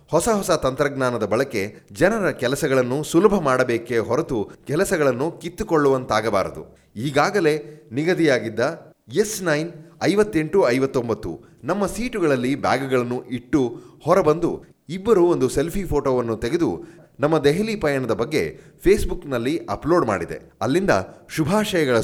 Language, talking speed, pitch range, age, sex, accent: Kannada, 95 wpm, 125-165 Hz, 30-49, male, native